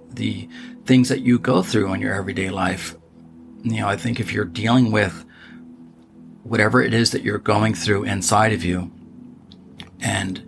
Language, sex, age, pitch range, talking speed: English, male, 40-59, 95-115 Hz, 165 wpm